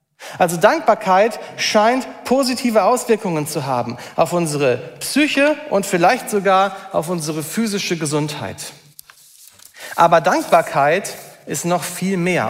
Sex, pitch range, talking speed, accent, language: male, 165-230 Hz, 110 wpm, German, German